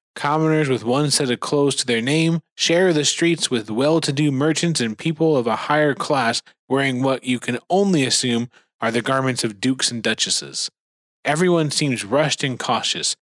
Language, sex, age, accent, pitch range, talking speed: English, male, 20-39, American, 115-150 Hz, 175 wpm